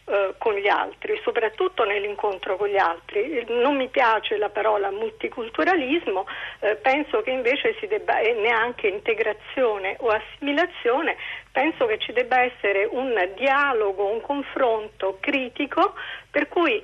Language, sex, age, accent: Italian, female, 50-69, native